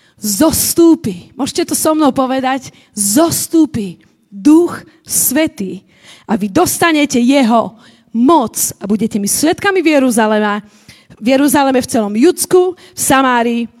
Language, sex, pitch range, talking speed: Slovak, female, 210-295 Hz, 115 wpm